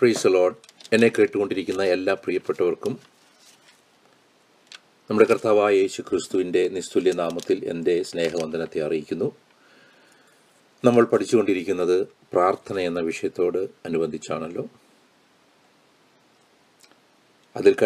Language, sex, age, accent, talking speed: English, male, 40-59, Indian, 35 wpm